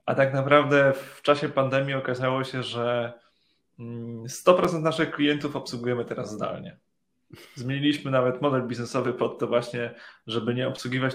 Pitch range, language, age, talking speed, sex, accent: 120-140 Hz, Polish, 20-39, 135 wpm, male, native